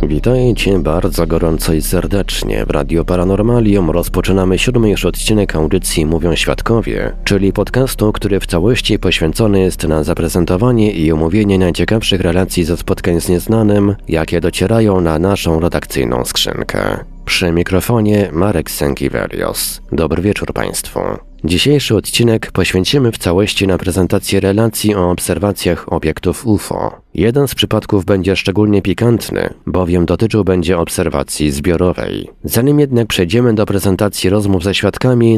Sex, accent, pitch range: male, native, 85-105 Hz